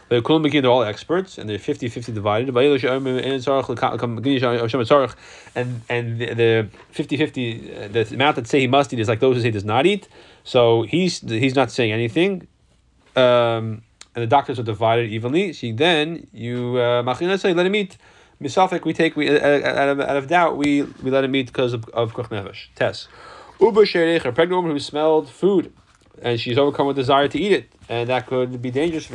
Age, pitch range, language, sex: 20-39, 120-150 Hz, English, male